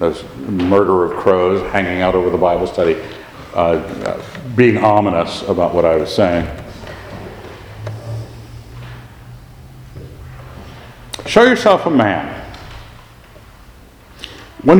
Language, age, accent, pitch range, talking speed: English, 60-79, American, 110-165 Hz, 95 wpm